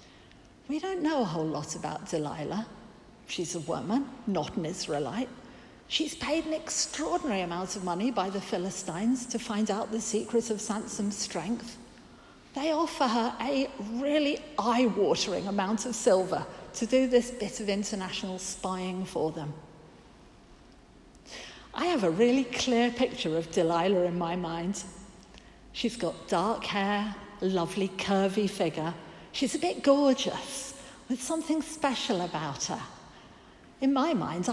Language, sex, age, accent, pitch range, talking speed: English, female, 50-69, British, 190-275 Hz, 140 wpm